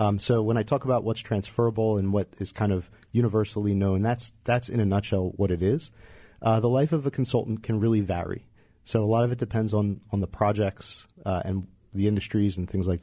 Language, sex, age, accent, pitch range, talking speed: English, male, 40-59, American, 95-110 Hz, 225 wpm